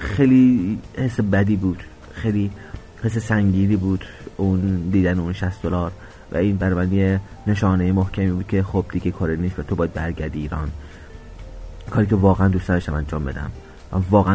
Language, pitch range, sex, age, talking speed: Persian, 85-105 Hz, male, 30-49, 155 wpm